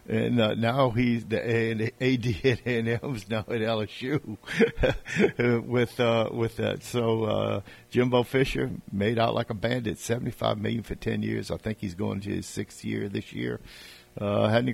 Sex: male